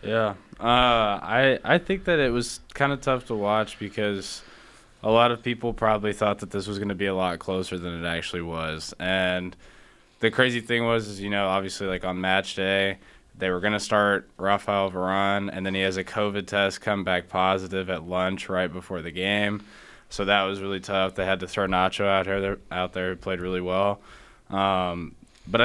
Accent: American